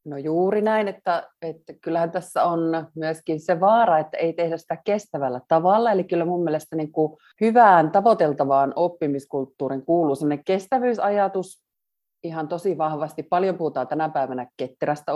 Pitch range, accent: 145-190 Hz, native